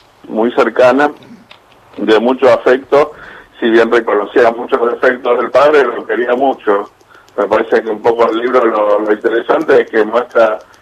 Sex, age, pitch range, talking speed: male, 50-69, 110-130 Hz, 155 wpm